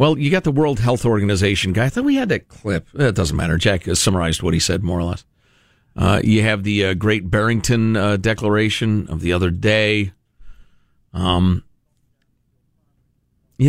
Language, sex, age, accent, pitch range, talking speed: English, male, 50-69, American, 100-135 Hz, 180 wpm